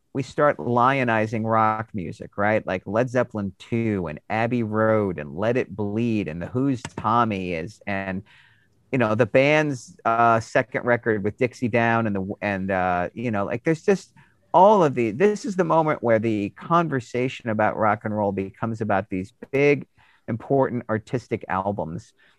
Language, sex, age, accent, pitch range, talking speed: English, male, 40-59, American, 105-135 Hz, 170 wpm